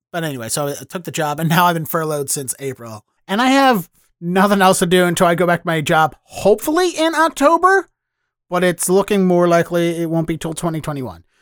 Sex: male